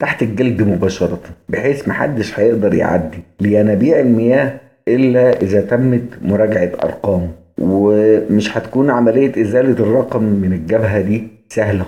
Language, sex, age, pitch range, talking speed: Arabic, male, 50-69, 100-125 Hz, 120 wpm